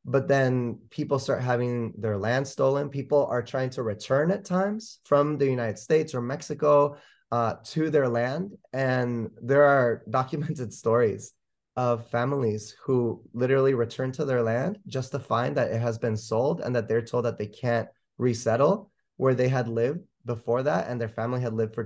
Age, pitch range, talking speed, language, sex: 20-39, 110-130 Hz, 180 wpm, English, male